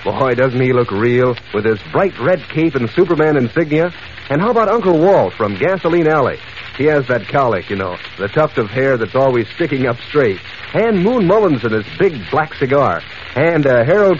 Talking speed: 200 wpm